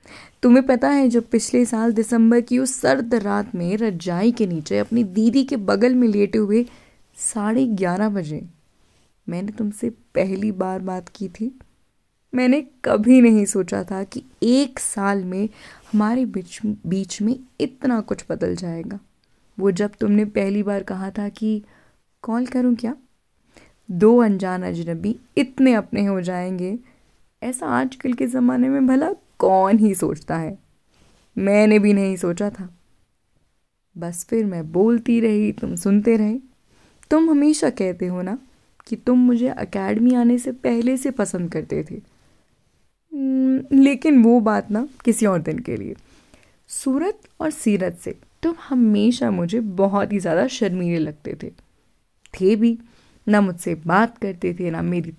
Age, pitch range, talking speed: 20-39, 195-255 Hz, 150 wpm